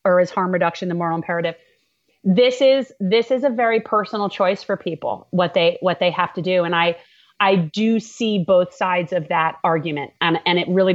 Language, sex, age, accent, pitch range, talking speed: English, female, 30-49, American, 175-225 Hz, 210 wpm